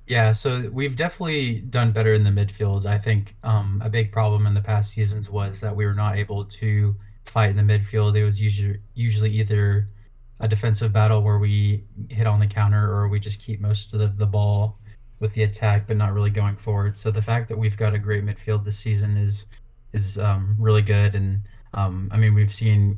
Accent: American